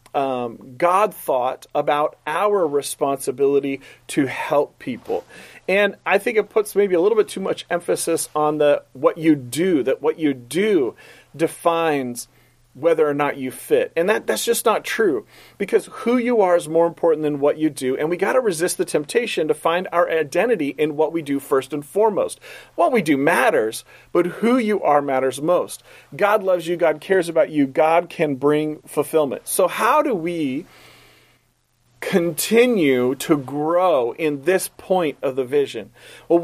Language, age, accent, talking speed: English, 40-59, American, 175 wpm